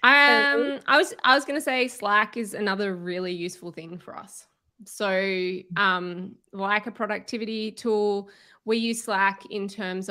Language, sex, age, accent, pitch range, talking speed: English, female, 20-39, Australian, 190-230 Hz, 160 wpm